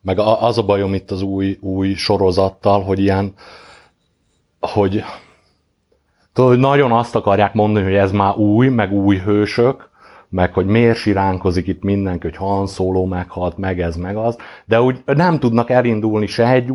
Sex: male